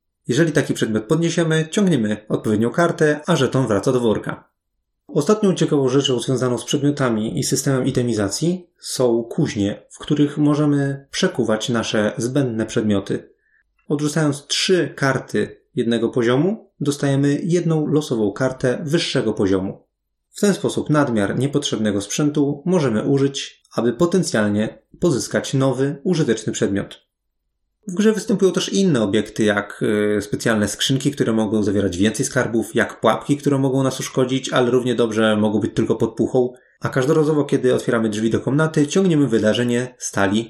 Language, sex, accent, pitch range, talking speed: Polish, male, native, 110-150 Hz, 140 wpm